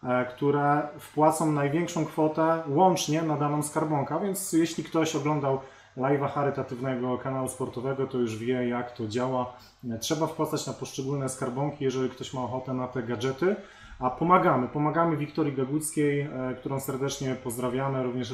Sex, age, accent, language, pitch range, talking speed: male, 30-49, native, Polish, 125-150 Hz, 145 wpm